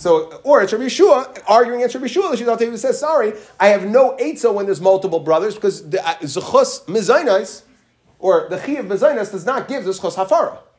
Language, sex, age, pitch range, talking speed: English, male, 30-49, 155-235 Hz, 190 wpm